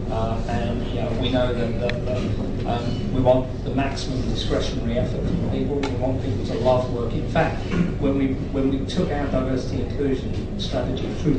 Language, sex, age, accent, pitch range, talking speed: English, male, 40-59, British, 105-130 Hz, 190 wpm